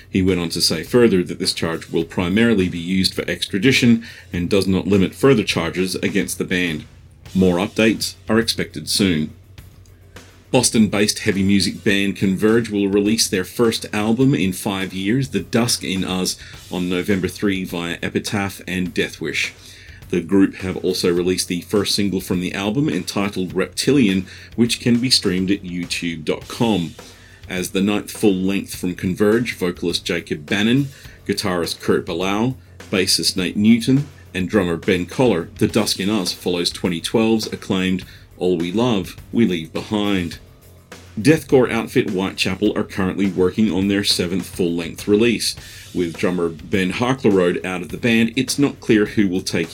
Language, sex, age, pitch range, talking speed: English, male, 40-59, 90-110 Hz, 155 wpm